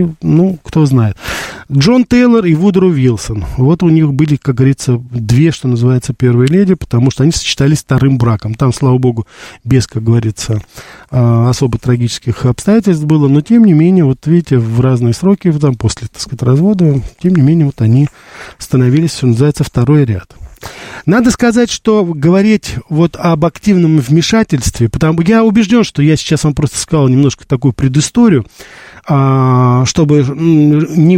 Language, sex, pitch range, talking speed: Russian, male, 125-165 Hz, 160 wpm